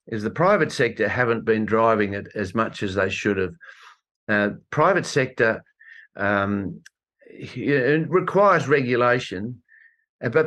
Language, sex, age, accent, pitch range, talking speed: English, male, 50-69, Australian, 110-160 Hz, 130 wpm